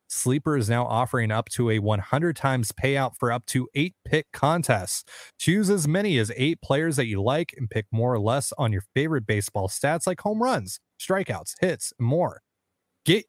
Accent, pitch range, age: American, 105-150 Hz, 30-49